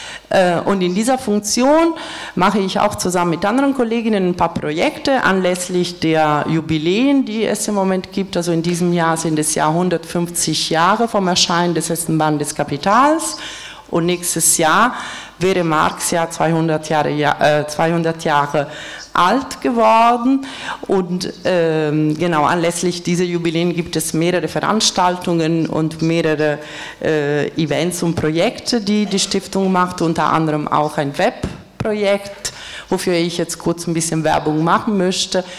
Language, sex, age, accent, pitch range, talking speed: German, female, 40-59, German, 160-205 Hz, 140 wpm